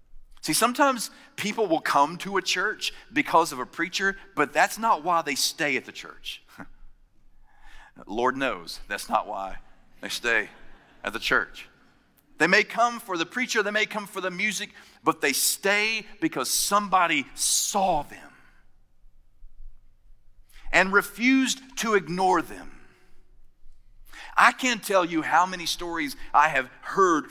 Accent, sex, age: American, male, 40-59